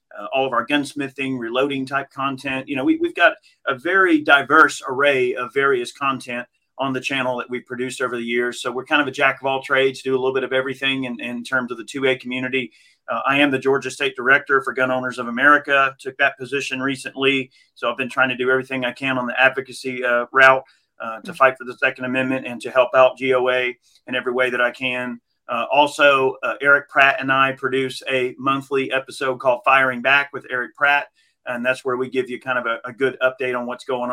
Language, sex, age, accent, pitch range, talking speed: English, male, 40-59, American, 125-140 Hz, 230 wpm